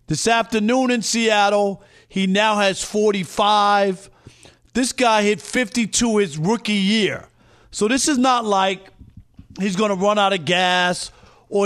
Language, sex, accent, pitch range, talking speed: English, male, American, 160-215 Hz, 145 wpm